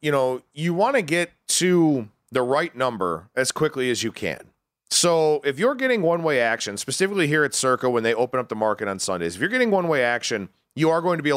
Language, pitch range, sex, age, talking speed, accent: English, 120-170 Hz, male, 40-59, 230 wpm, American